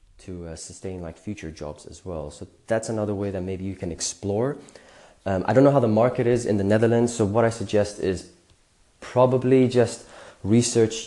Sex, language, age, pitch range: male, English, 20-39, 90-115 Hz